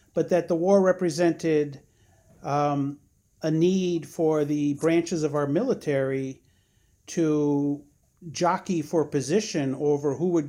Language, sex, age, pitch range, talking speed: English, male, 50-69, 135-160 Hz, 120 wpm